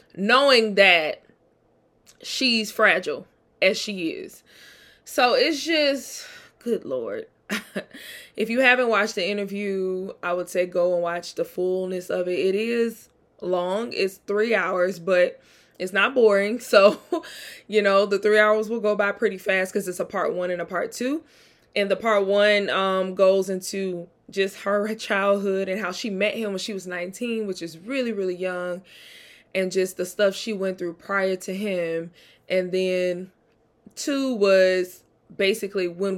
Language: English